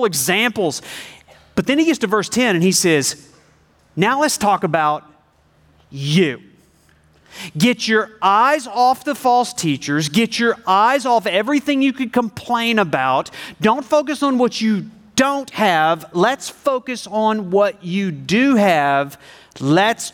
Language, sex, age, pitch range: English, male, 40-59, 155-225 Hz